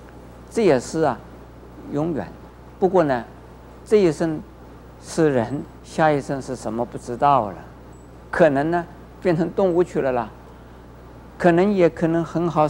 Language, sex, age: Chinese, male, 50-69